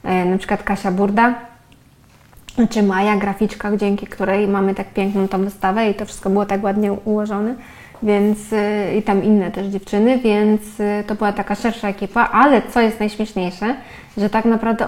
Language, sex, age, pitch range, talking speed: Polish, female, 20-39, 195-225 Hz, 160 wpm